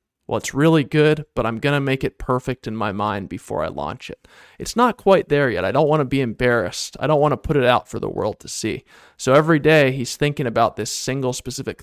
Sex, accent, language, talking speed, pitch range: male, American, English, 255 wpm, 115-145 Hz